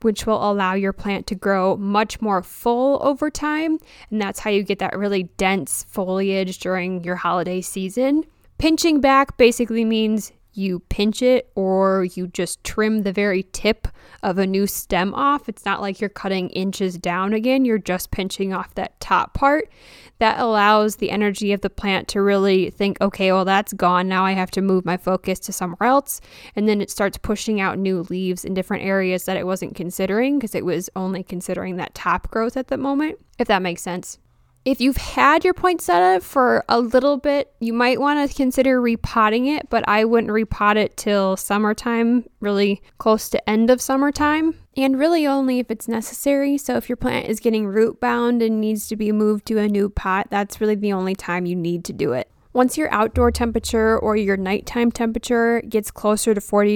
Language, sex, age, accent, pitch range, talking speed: English, female, 10-29, American, 195-245 Hz, 195 wpm